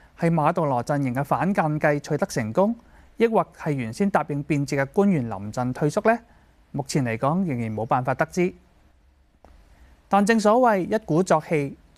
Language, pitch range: Chinese, 125-180 Hz